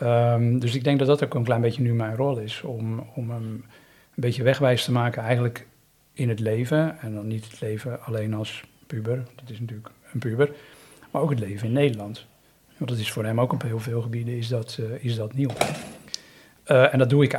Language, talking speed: Dutch, 205 wpm